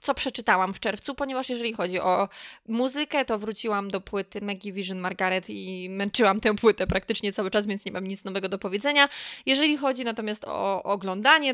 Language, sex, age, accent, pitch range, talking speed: Polish, female, 20-39, native, 200-260 Hz, 180 wpm